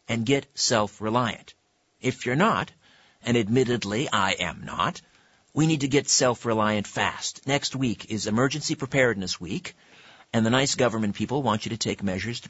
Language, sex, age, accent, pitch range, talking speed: English, male, 50-69, American, 105-130 Hz, 165 wpm